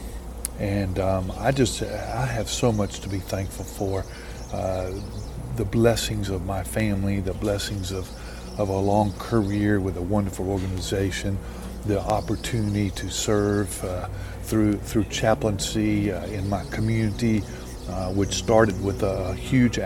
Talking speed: 140 wpm